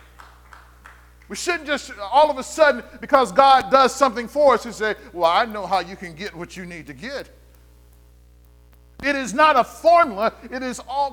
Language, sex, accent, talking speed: English, male, American, 190 wpm